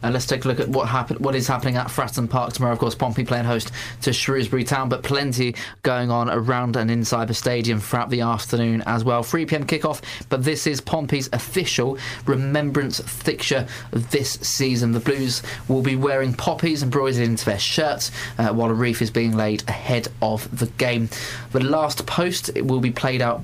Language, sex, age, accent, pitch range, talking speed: English, male, 20-39, British, 115-130 Hz, 200 wpm